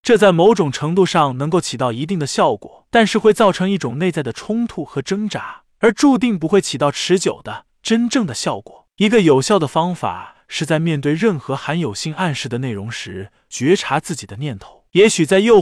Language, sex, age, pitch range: Chinese, male, 20-39, 145-205 Hz